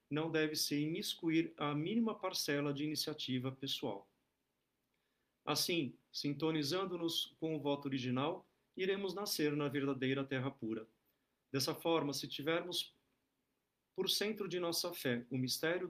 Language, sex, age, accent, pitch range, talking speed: Portuguese, male, 50-69, Brazilian, 130-165 Hz, 120 wpm